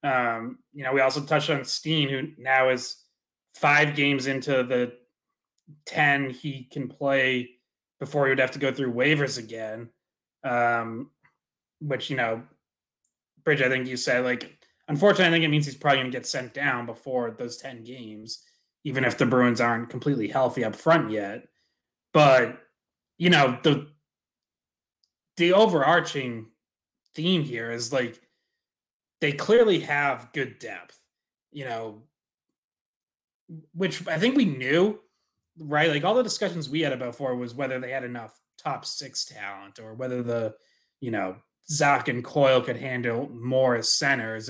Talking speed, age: 155 wpm, 20-39